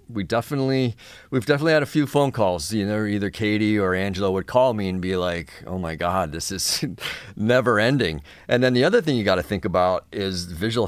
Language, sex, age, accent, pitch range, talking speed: English, male, 40-59, American, 90-115 Hz, 220 wpm